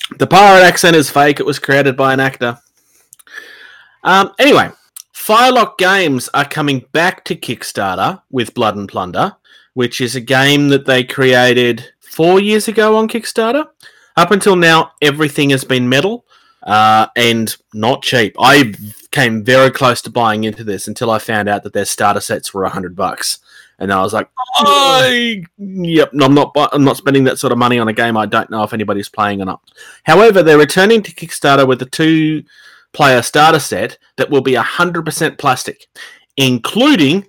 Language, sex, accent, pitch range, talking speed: English, male, Australian, 120-160 Hz, 170 wpm